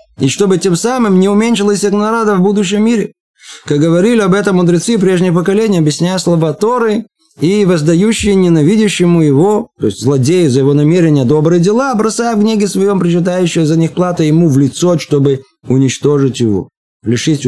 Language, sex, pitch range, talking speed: Russian, male, 130-185 Hz, 160 wpm